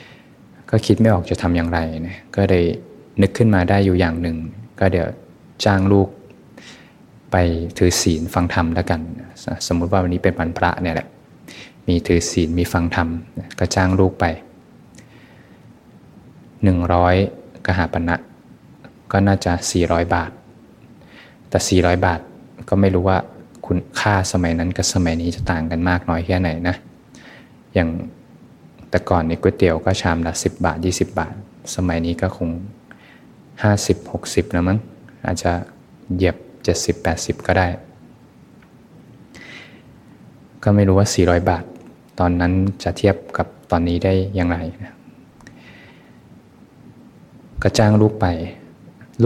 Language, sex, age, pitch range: Thai, male, 20-39, 85-95 Hz